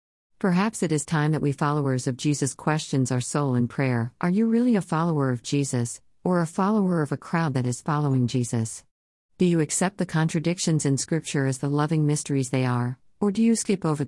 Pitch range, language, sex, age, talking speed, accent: 130-175 Hz, English, female, 50-69, 210 wpm, American